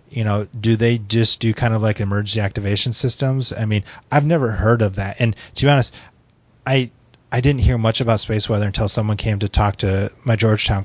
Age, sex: 30-49, male